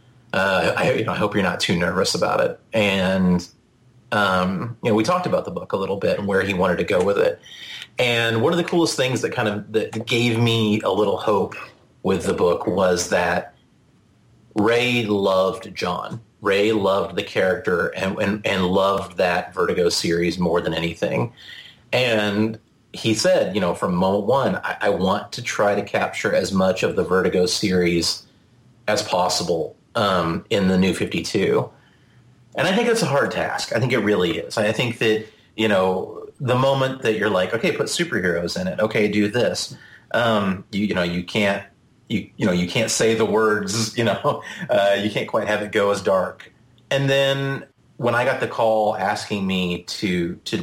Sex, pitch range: male, 95-120 Hz